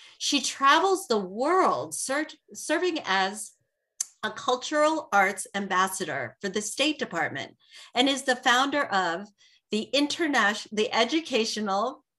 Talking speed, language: 110 wpm, English